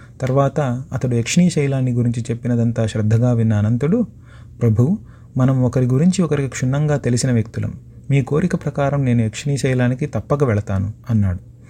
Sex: male